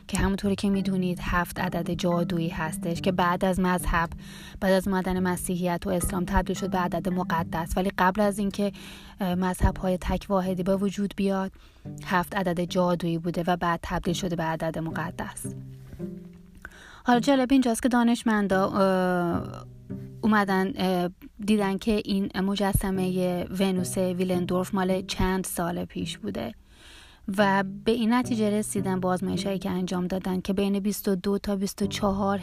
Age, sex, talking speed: 30-49, female, 140 wpm